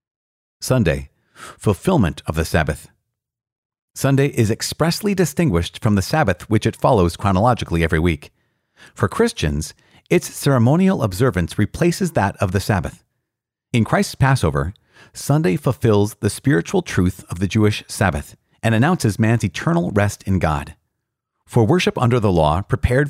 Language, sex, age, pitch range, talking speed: English, male, 40-59, 95-130 Hz, 140 wpm